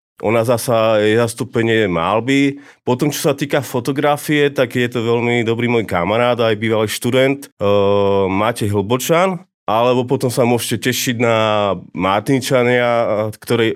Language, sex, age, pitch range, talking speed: Slovak, male, 30-49, 110-130 Hz, 140 wpm